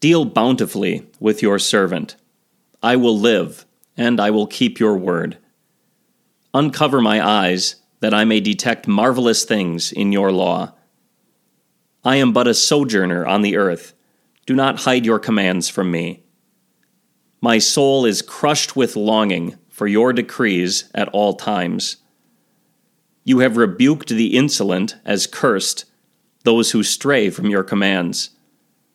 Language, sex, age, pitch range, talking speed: English, male, 40-59, 100-125 Hz, 135 wpm